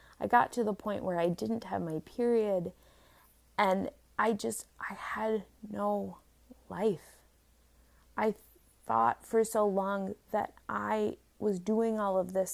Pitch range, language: 140-205 Hz, English